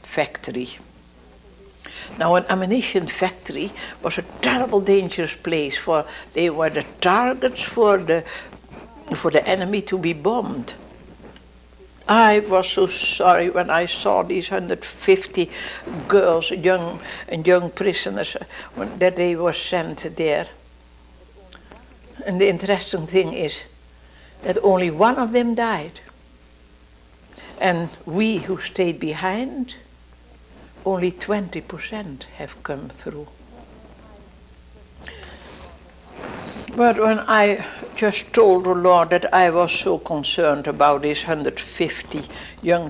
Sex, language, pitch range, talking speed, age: female, English, 145-205 Hz, 110 wpm, 60-79